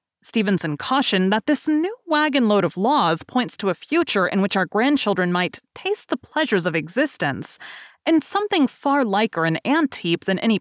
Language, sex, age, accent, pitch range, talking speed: English, female, 30-49, American, 180-260 Hz, 175 wpm